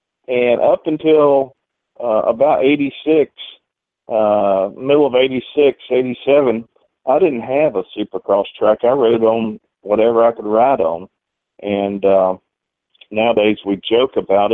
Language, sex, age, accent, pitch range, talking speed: English, male, 40-59, American, 105-125 Hz, 130 wpm